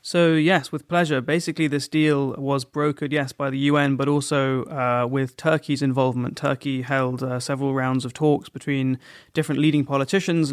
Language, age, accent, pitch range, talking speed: English, 20-39, British, 130-150 Hz, 170 wpm